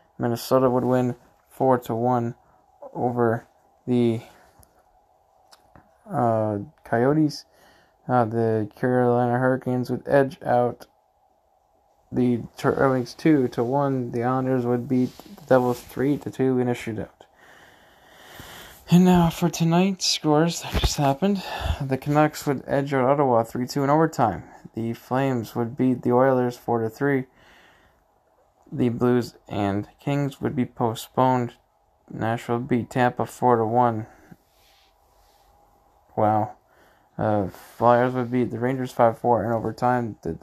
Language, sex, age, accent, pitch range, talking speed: English, male, 20-39, American, 115-135 Hz, 130 wpm